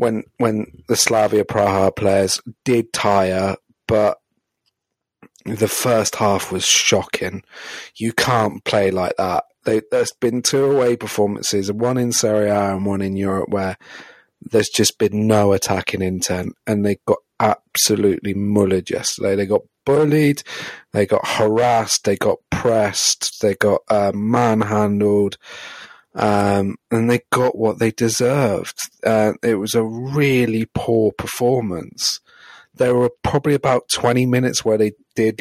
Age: 30-49